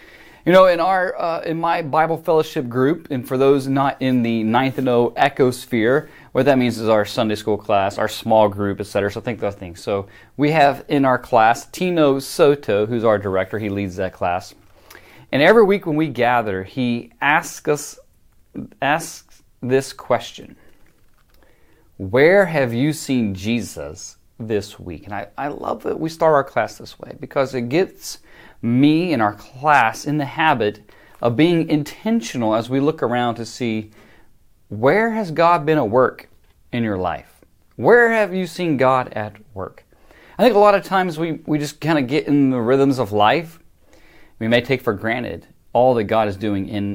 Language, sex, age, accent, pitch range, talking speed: English, male, 30-49, American, 110-155 Hz, 185 wpm